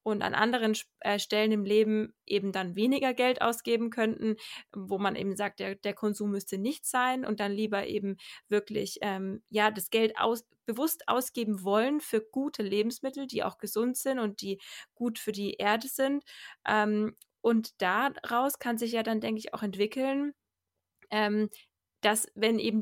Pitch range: 200-225 Hz